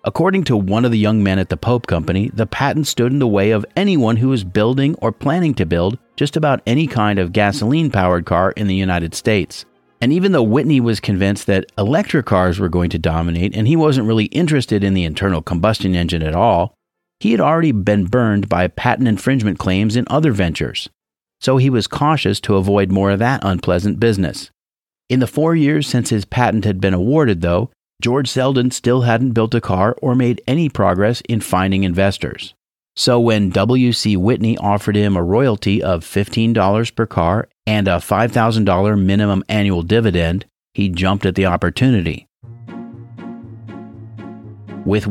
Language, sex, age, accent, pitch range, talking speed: English, male, 40-59, American, 95-125 Hz, 180 wpm